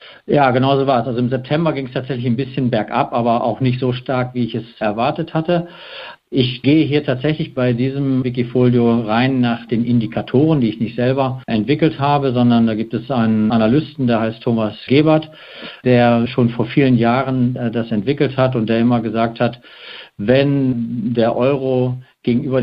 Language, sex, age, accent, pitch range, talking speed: German, male, 50-69, German, 115-135 Hz, 180 wpm